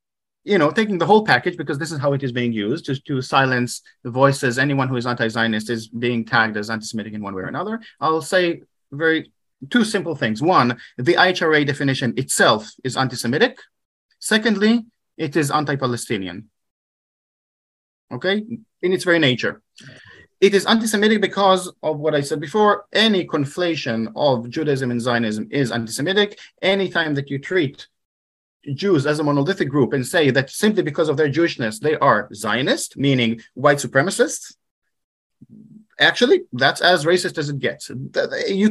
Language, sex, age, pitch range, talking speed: English, male, 30-49, 130-185 Hz, 160 wpm